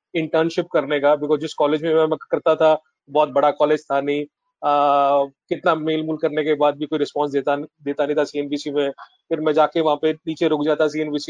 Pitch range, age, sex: 145-165 Hz, 30-49, male